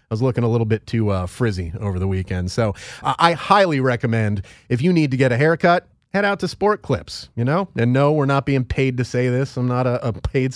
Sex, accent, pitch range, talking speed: male, American, 120-155 Hz, 255 wpm